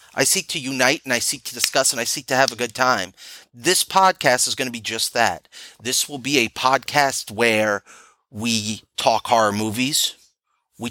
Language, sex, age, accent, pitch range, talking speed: English, male, 30-49, American, 105-135 Hz, 200 wpm